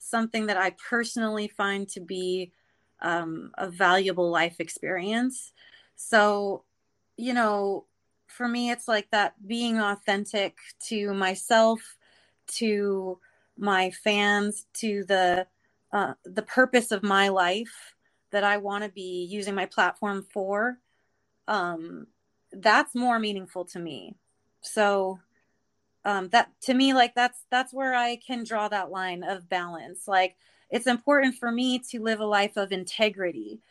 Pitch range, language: 190-225 Hz, English